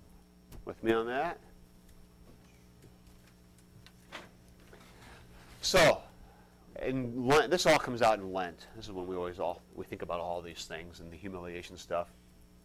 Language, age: English, 40-59